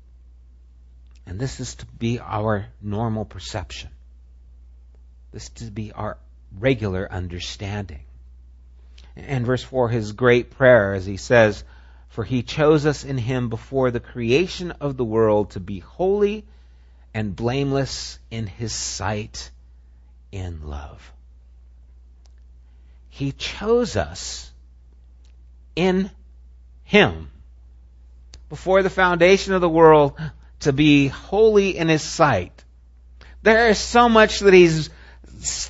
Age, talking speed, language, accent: 50-69, 115 wpm, English, American